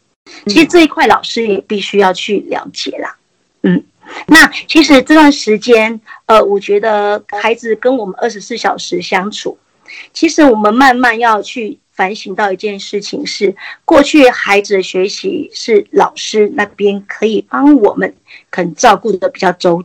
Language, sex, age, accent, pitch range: Chinese, female, 50-69, American, 200-280 Hz